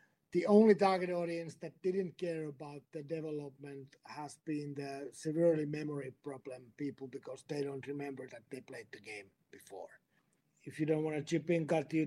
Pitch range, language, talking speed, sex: 140-170 Hz, English, 180 wpm, male